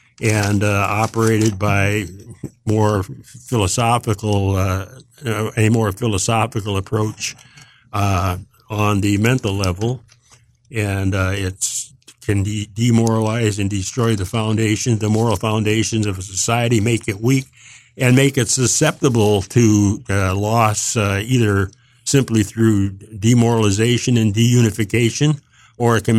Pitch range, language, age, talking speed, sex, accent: 105-120 Hz, English, 60-79, 115 wpm, male, American